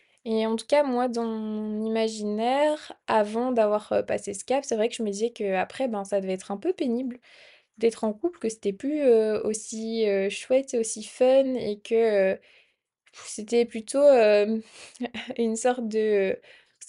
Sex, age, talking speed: female, 20-39, 175 wpm